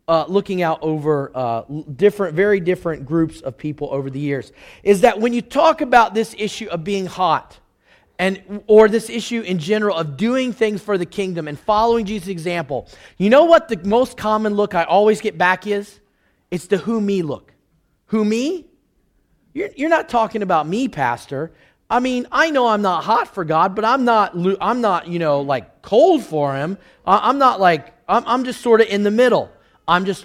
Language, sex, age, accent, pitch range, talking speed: English, male, 30-49, American, 165-235 Hz, 195 wpm